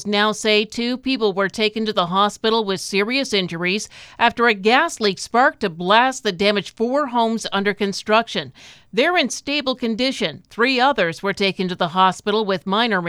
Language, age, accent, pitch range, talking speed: English, 50-69, American, 195-240 Hz, 175 wpm